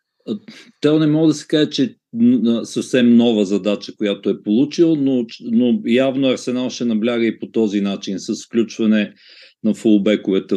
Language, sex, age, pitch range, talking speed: Bulgarian, male, 50-69, 105-150 Hz, 150 wpm